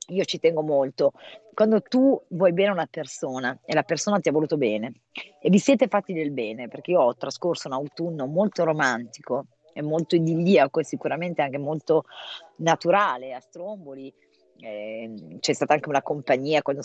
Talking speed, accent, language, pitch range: 175 wpm, native, Italian, 130-180 Hz